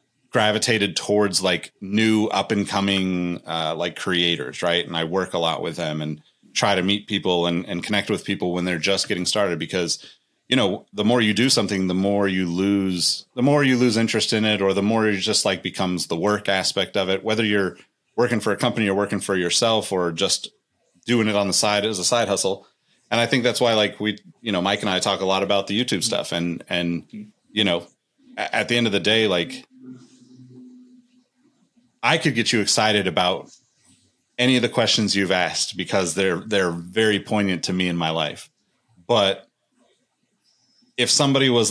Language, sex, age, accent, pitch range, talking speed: English, male, 30-49, American, 95-125 Hz, 205 wpm